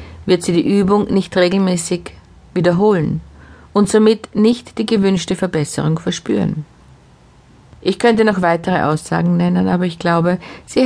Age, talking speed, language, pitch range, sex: 50-69, 135 wpm, German, 155-195 Hz, female